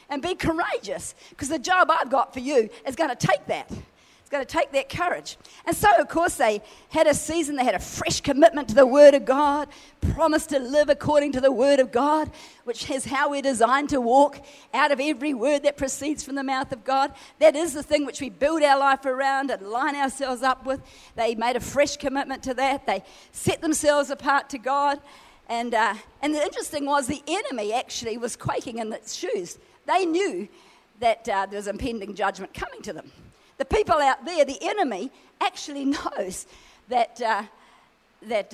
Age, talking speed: 50-69, 200 wpm